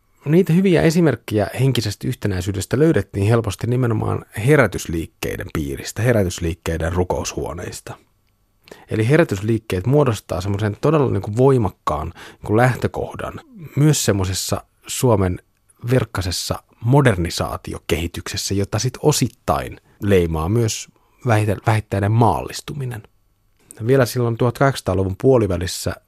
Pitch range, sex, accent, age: 90-120 Hz, male, native, 30-49